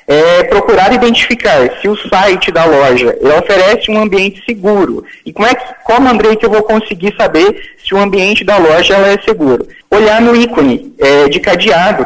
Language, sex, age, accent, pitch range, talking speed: Portuguese, male, 20-39, Brazilian, 160-220 Hz, 165 wpm